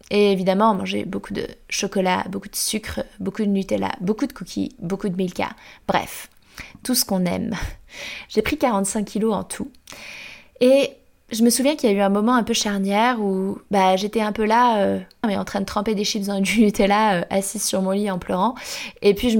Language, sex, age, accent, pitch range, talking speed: French, female, 20-39, French, 195-230 Hz, 210 wpm